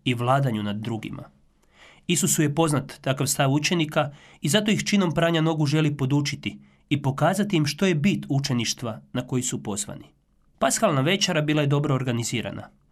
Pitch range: 125-160 Hz